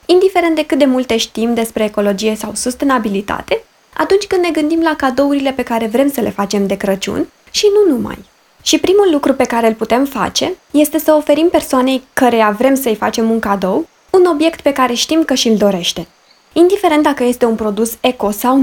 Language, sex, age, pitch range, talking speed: Romanian, female, 20-39, 215-300 Hz, 195 wpm